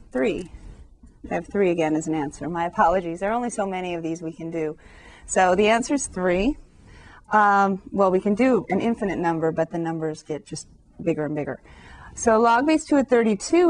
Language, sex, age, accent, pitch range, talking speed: English, female, 30-49, American, 175-230 Hz, 200 wpm